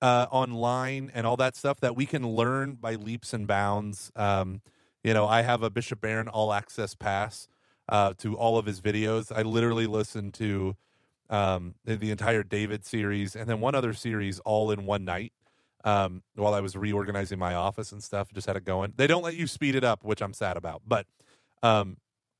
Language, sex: English, male